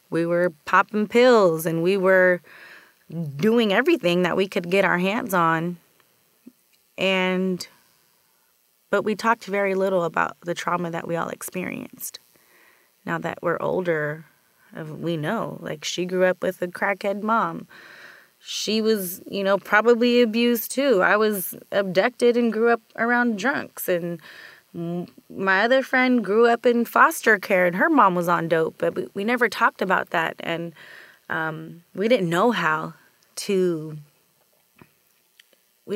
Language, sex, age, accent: English, female, 20-39, American